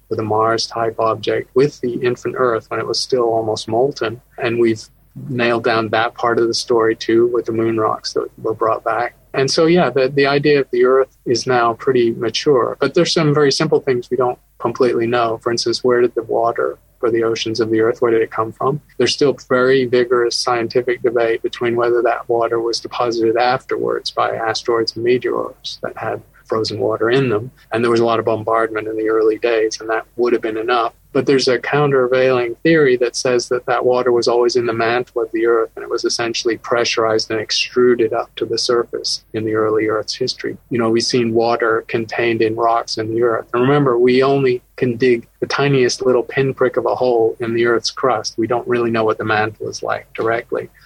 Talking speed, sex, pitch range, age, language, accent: 215 wpm, male, 115-130 Hz, 40-59, English, American